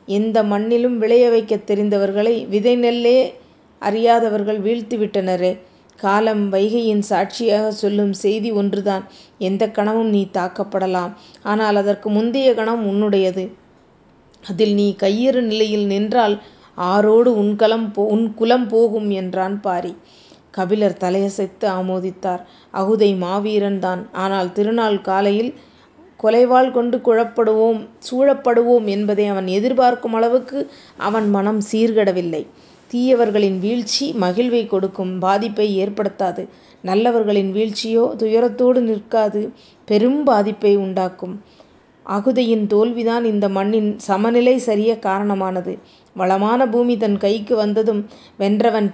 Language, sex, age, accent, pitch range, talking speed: Tamil, female, 20-39, native, 200-230 Hz, 95 wpm